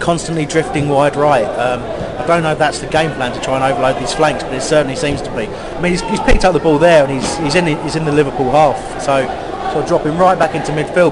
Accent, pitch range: British, 130-165 Hz